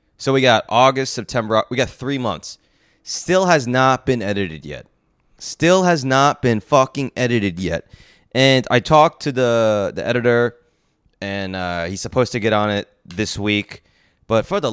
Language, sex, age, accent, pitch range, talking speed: English, male, 30-49, American, 100-135 Hz, 170 wpm